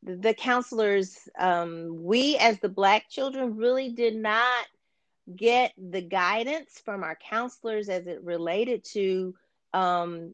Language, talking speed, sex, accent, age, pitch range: English, 130 wpm, female, American, 40-59, 175-220 Hz